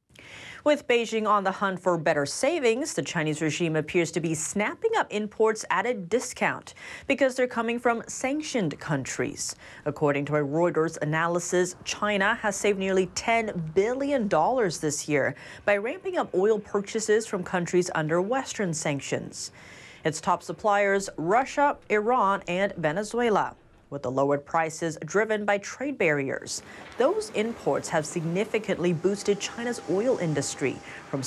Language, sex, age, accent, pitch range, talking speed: English, female, 30-49, American, 160-225 Hz, 140 wpm